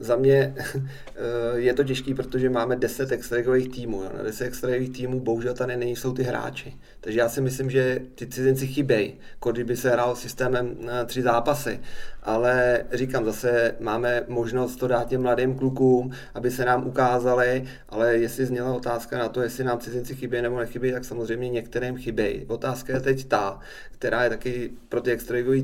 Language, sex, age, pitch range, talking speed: Czech, male, 30-49, 120-130 Hz, 175 wpm